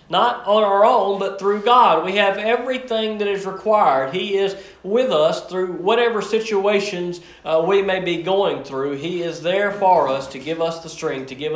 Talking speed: 195 wpm